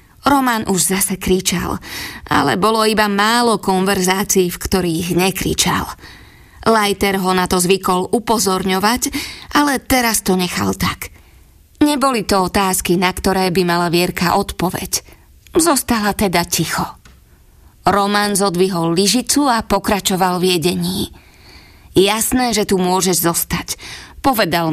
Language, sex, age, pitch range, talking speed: Slovak, female, 20-39, 180-220 Hz, 115 wpm